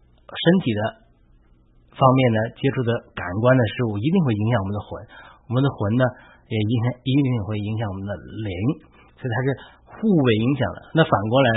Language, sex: Chinese, male